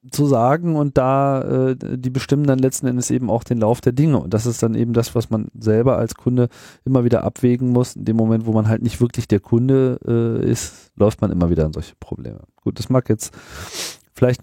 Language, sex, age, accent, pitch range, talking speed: German, male, 40-59, German, 90-120 Hz, 230 wpm